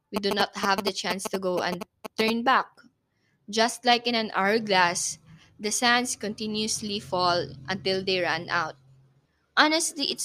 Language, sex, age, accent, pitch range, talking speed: English, female, 20-39, Filipino, 185-230 Hz, 150 wpm